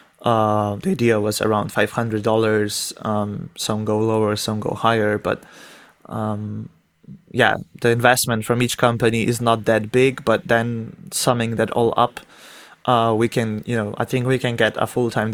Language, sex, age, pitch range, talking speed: English, male, 20-39, 110-125 Hz, 180 wpm